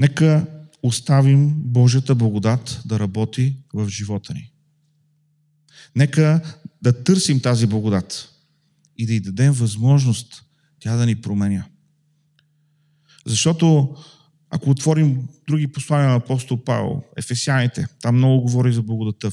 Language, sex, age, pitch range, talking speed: Bulgarian, male, 40-59, 120-150 Hz, 115 wpm